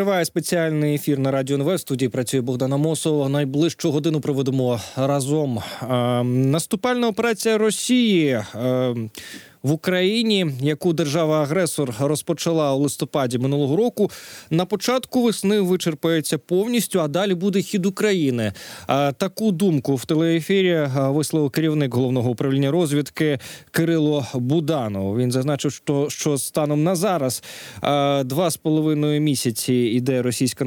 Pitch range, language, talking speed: 130-175 Hz, Ukrainian, 120 wpm